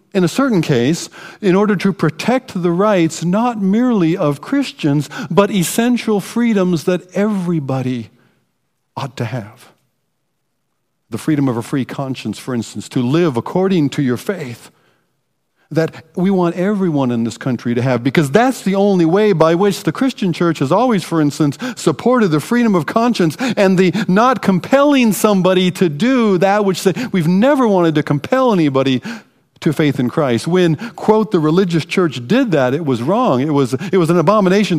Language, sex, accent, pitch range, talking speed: English, male, American, 130-190 Hz, 170 wpm